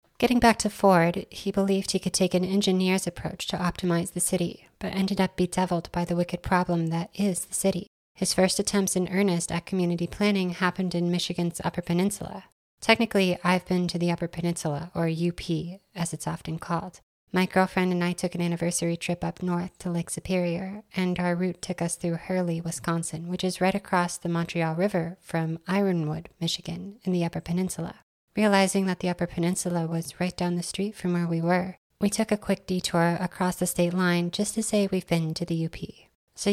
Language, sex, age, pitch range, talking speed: English, female, 30-49, 170-190 Hz, 200 wpm